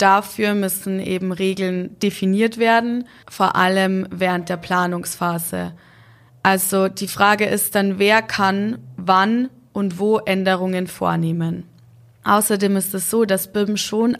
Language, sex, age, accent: German, female, 20-39, German